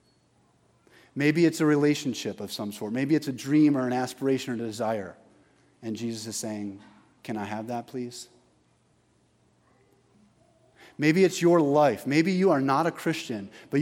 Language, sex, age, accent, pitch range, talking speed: English, male, 30-49, American, 105-145 Hz, 160 wpm